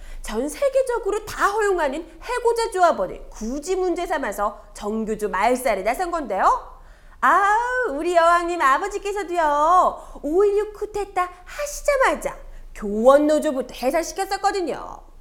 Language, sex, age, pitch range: Korean, female, 30-49, 300-415 Hz